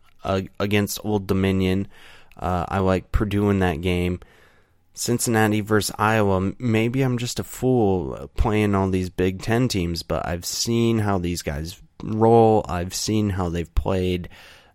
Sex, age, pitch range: male, 30-49, 90-105 Hz